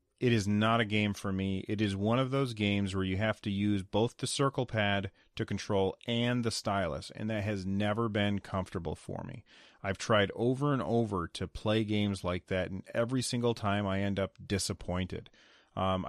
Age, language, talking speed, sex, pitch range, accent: 30-49, English, 200 wpm, male, 95-115 Hz, American